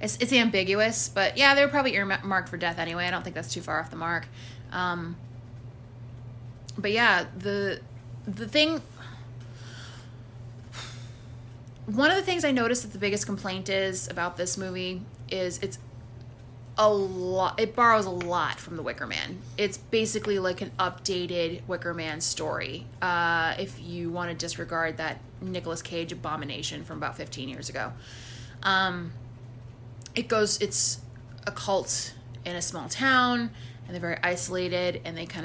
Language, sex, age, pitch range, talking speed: English, female, 20-39, 120-190 Hz, 155 wpm